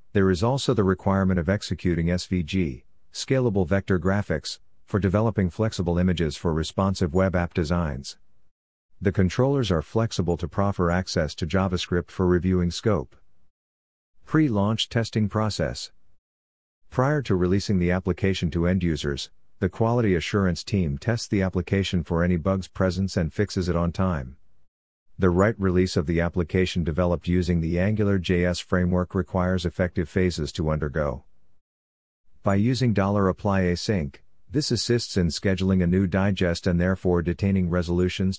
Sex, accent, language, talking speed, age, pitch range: male, American, English, 140 wpm, 50-69, 85-100 Hz